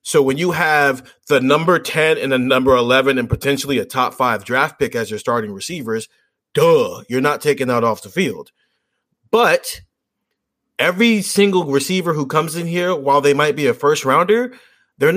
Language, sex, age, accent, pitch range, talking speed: English, male, 30-49, American, 135-210 Hz, 180 wpm